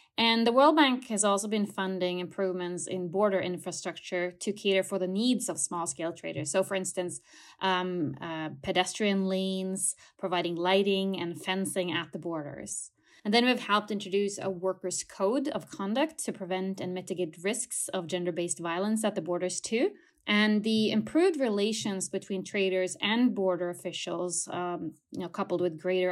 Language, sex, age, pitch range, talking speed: English, female, 20-39, 180-210 Hz, 165 wpm